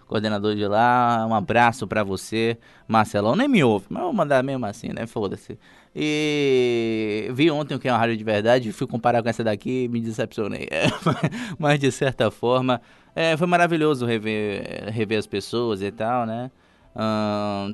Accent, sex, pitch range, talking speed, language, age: Brazilian, male, 105-125 Hz, 175 wpm, Portuguese, 20-39